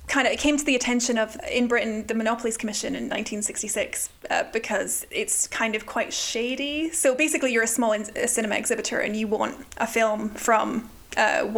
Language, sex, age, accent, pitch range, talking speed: English, female, 10-29, British, 220-245 Hz, 195 wpm